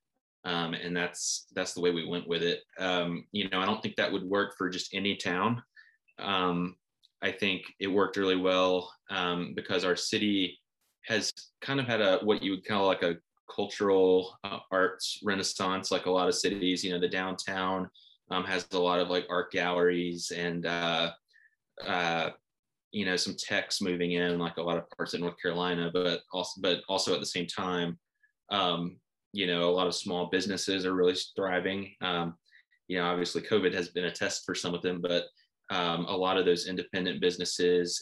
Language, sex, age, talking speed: English, male, 20-39, 195 wpm